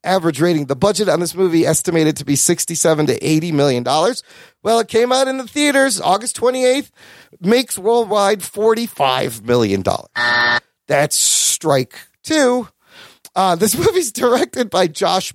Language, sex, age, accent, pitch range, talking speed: English, male, 30-49, American, 145-225 Hz, 160 wpm